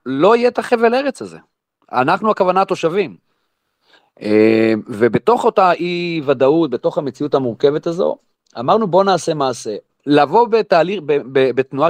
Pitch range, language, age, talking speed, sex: 130-195 Hz, Hebrew, 40-59, 135 wpm, male